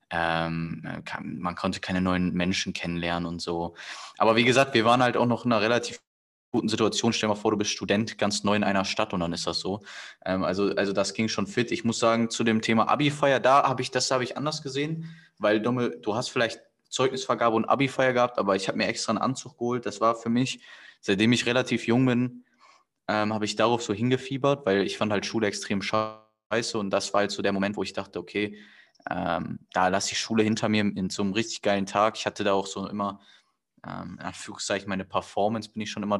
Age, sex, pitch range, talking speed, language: 20-39, male, 100-120 Hz, 230 wpm, German